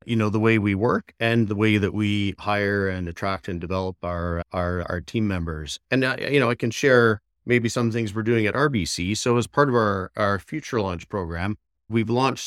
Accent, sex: American, male